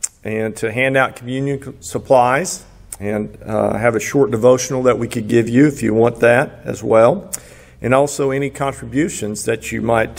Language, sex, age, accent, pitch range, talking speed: English, male, 50-69, American, 115-140 Hz, 175 wpm